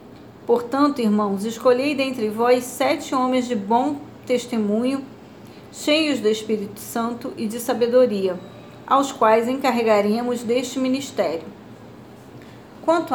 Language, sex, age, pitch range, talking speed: Portuguese, female, 40-59, 230-270 Hz, 105 wpm